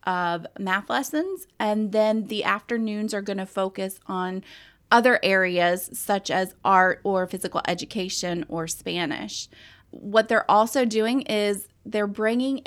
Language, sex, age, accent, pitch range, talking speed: English, female, 20-39, American, 190-225 Hz, 135 wpm